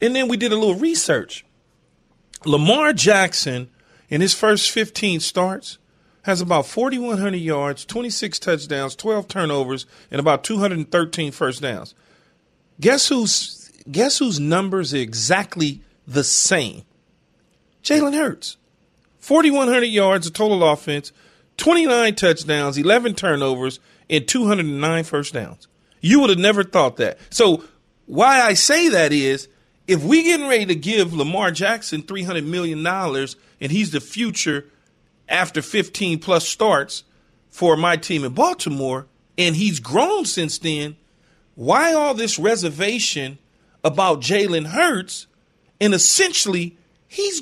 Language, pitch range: English, 155-220 Hz